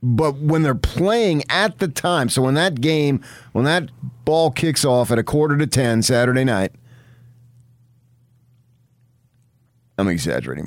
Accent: American